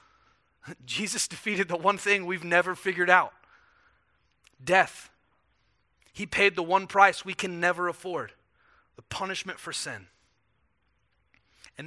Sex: male